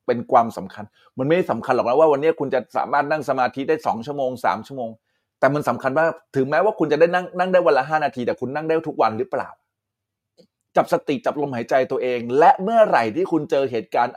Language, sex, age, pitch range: Thai, male, 20-39, 110-150 Hz